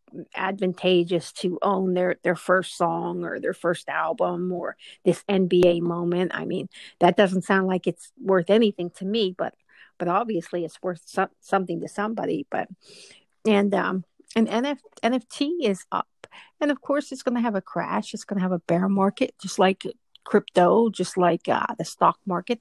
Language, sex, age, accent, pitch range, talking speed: English, female, 50-69, American, 175-200 Hz, 180 wpm